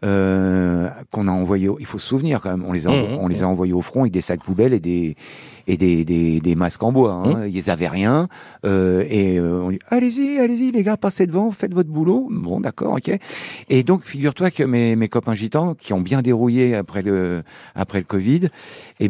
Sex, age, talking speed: male, 50-69, 220 wpm